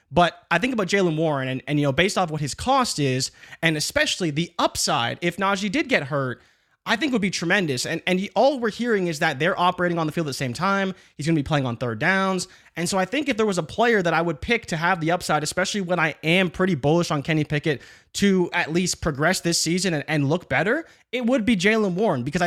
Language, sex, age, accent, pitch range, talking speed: English, male, 20-39, American, 155-190 Hz, 260 wpm